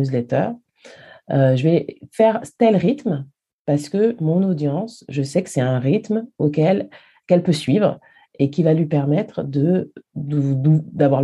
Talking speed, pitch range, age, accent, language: 155 wpm, 135-180 Hz, 40-59, French, French